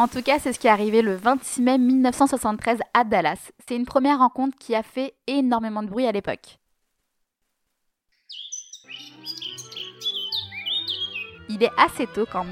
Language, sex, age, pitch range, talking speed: French, female, 20-39, 215-260 Hz, 150 wpm